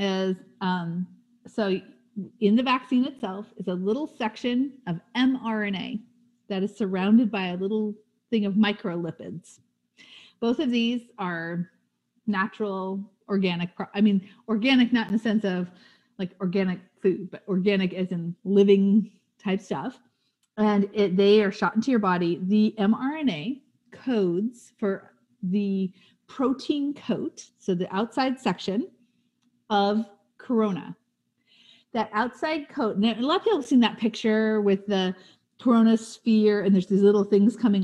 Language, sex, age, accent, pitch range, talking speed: English, female, 40-59, American, 185-225 Hz, 140 wpm